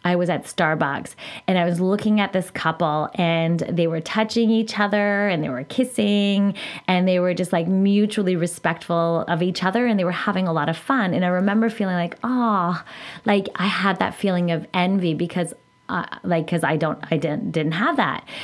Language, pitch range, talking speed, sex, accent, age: English, 170-215 Hz, 205 wpm, female, American, 20-39